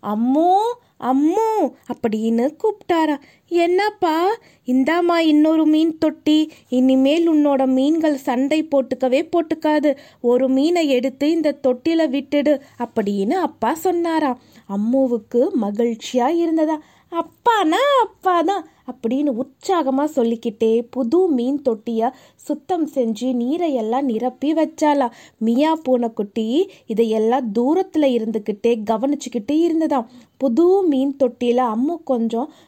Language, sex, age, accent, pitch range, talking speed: Tamil, female, 20-39, native, 245-335 Hz, 90 wpm